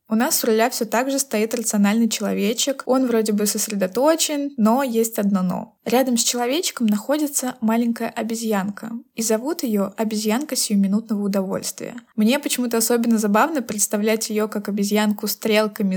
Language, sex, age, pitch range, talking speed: Russian, female, 20-39, 215-250 Hz, 150 wpm